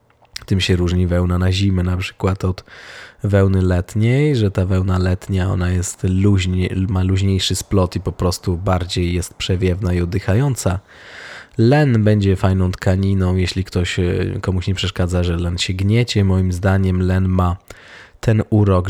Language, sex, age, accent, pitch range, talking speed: Polish, male, 20-39, native, 95-110 Hz, 150 wpm